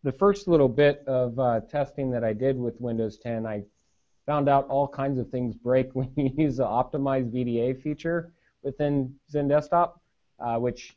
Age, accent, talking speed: 30-49, American, 180 wpm